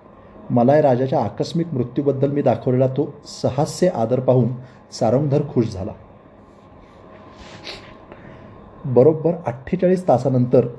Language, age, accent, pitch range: Marathi, 30-49, native, 110-140 Hz